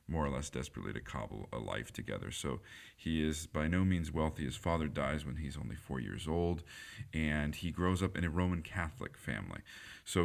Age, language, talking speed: 40-59, English, 205 wpm